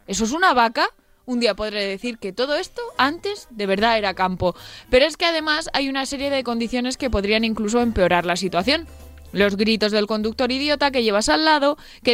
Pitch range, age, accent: 215-275 Hz, 20-39, Spanish